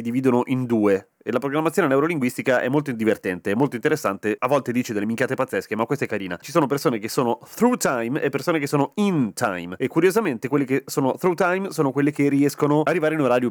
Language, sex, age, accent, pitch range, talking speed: Italian, male, 30-49, native, 115-145 Hz, 225 wpm